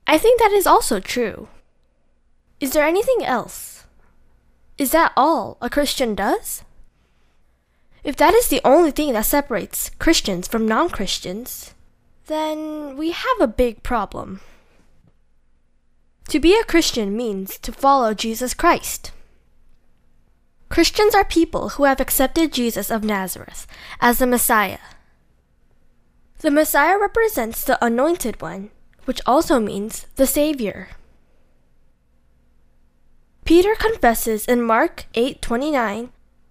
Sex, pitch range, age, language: female, 190-300 Hz, 10-29, Korean